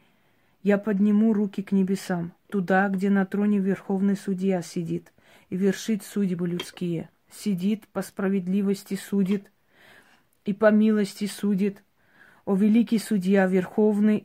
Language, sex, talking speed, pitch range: Russian, female, 120 wpm, 195-215 Hz